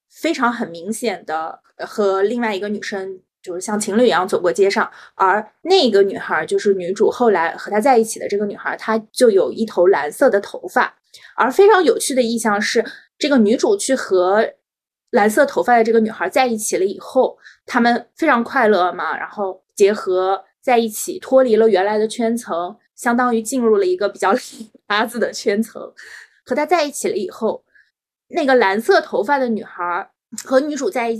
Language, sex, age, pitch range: Chinese, female, 20-39, 205-295 Hz